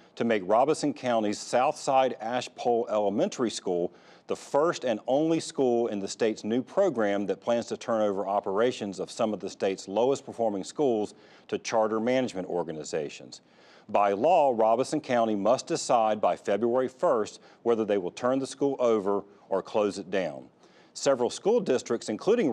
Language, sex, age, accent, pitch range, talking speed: English, male, 40-59, American, 100-125 Hz, 160 wpm